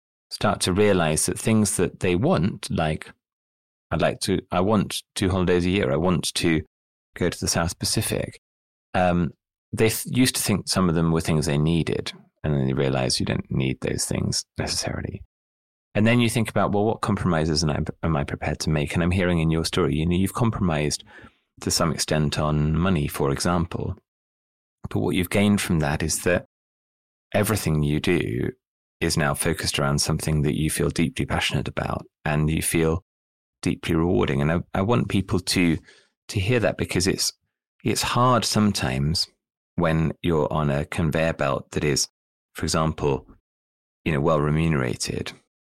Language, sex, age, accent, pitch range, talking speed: English, male, 30-49, British, 70-95 Hz, 180 wpm